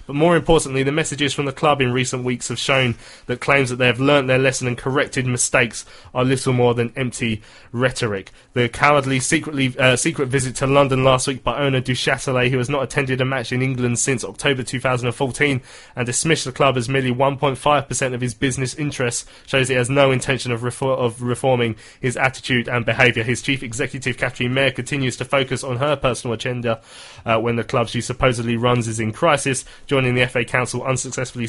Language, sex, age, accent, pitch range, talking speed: English, male, 20-39, British, 120-135 Hz, 200 wpm